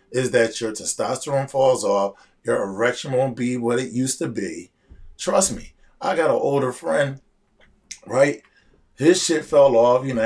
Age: 20-39